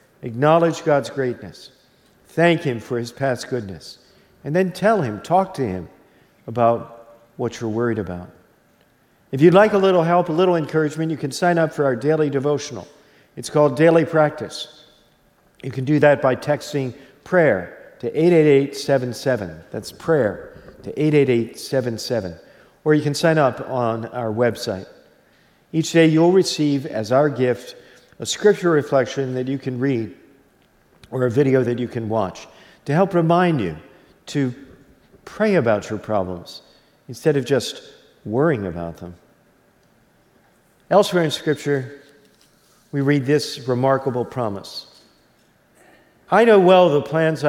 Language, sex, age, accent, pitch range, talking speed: English, male, 50-69, American, 125-160 Hz, 140 wpm